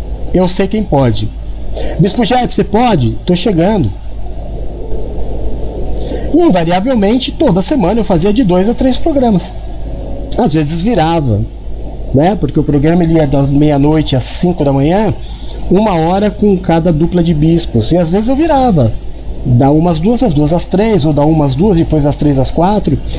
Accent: Brazilian